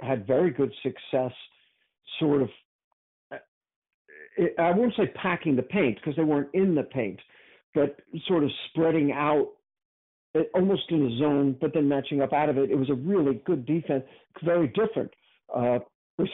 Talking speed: 160 wpm